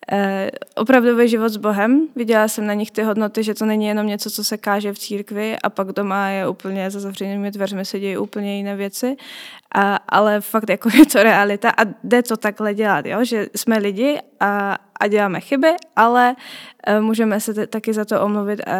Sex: female